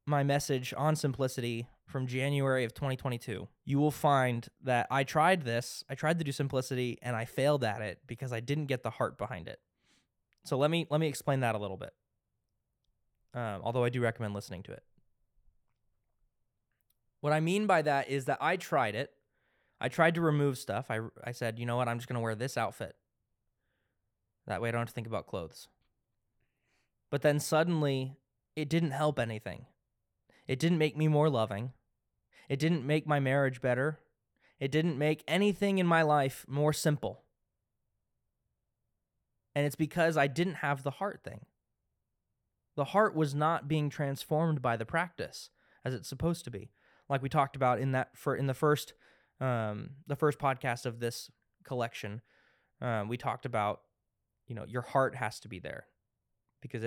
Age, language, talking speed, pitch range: 20-39, English, 180 wpm, 115-150 Hz